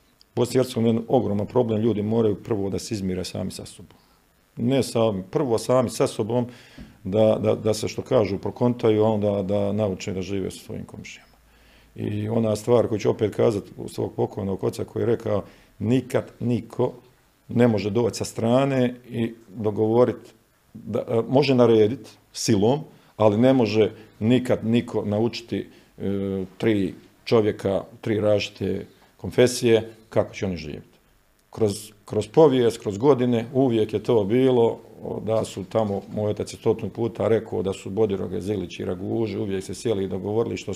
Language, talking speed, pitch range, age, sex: Croatian, 155 wpm, 100-115 Hz, 50-69, male